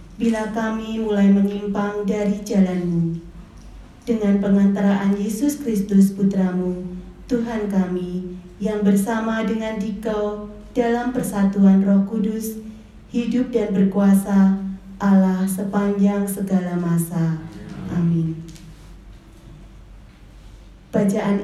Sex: female